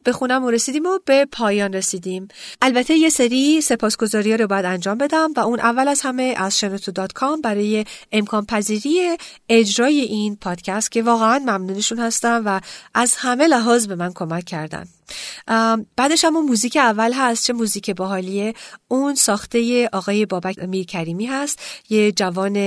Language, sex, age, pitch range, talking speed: Persian, female, 40-59, 195-245 Hz, 155 wpm